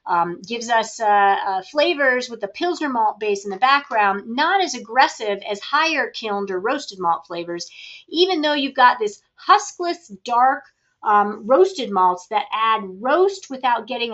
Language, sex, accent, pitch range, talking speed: English, female, American, 195-260 Hz, 165 wpm